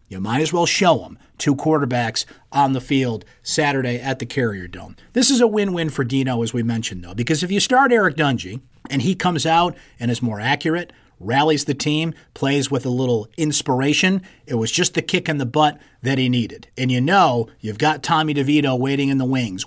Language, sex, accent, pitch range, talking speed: English, male, American, 120-160 Hz, 215 wpm